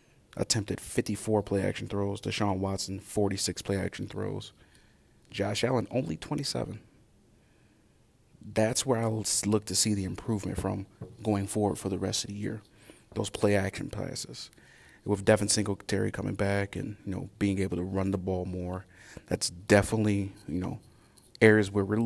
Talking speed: 150 wpm